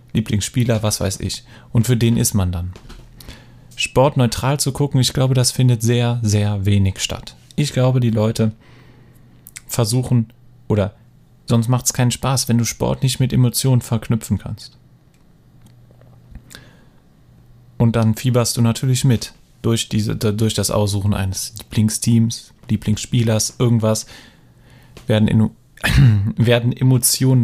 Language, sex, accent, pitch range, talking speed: German, male, German, 110-130 Hz, 130 wpm